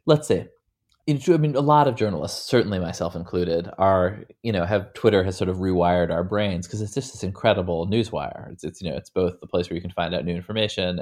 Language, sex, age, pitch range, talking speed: English, male, 20-39, 90-105 Hz, 235 wpm